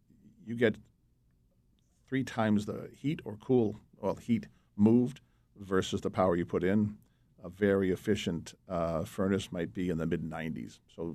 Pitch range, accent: 85-105 Hz, American